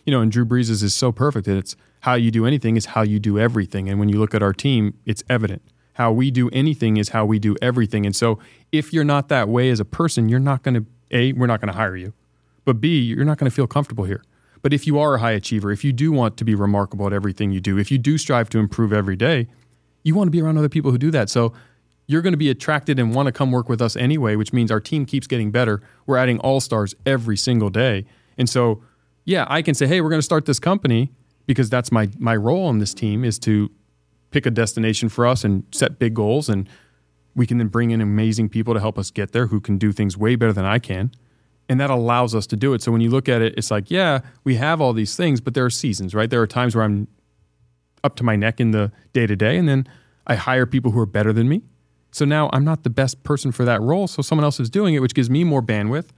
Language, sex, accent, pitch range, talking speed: English, male, American, 105-135 Hz, 270 wpm